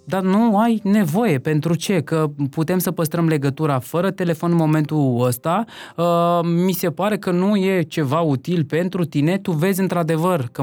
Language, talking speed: Romanian, 175 wpm